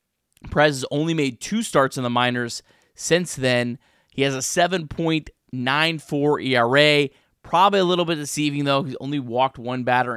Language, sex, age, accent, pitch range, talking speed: English, male, 20-39, American, 125-155 Hz, 160 wpm